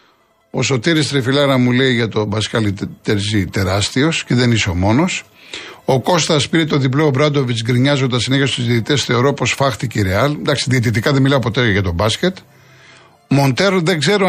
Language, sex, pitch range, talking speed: Greek, male, 125-165 Hz, 170 wpm